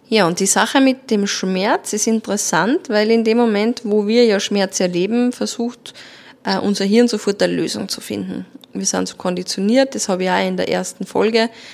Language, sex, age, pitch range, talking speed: German, female, 20-39, 190-250 Hz, 195 wpm